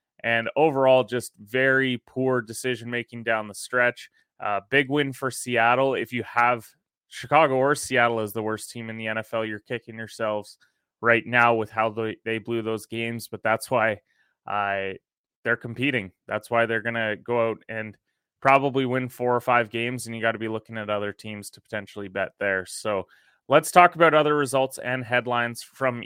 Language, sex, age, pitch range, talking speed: English, male, 20-39, 115-130 Hz, 185 wpm